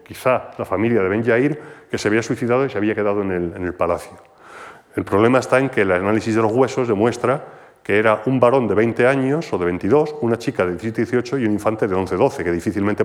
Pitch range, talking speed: 100-130 Hz, 230 wpm